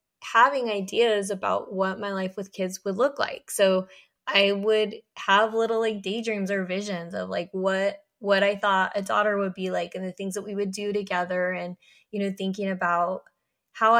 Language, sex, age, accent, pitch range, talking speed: English, female, 20-39, American, 190-215 Hz, 195 wpm